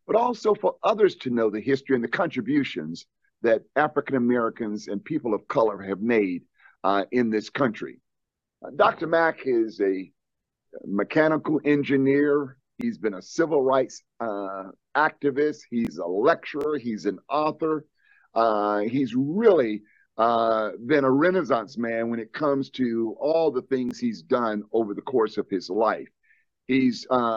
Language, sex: English, male